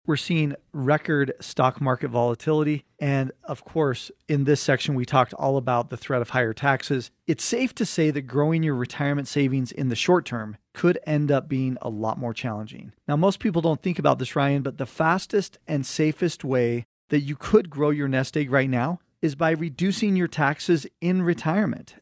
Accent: American